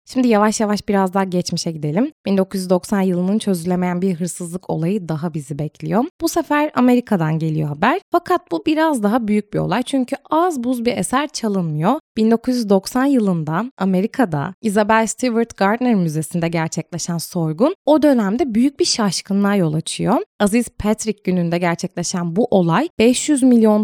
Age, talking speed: 20-39, 145 wpm